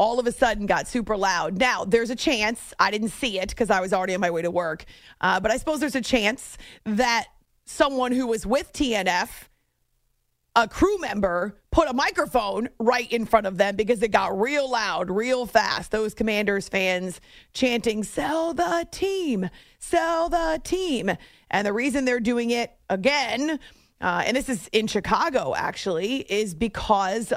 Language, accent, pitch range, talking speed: English, American, 205-255 Hz, 180 wpm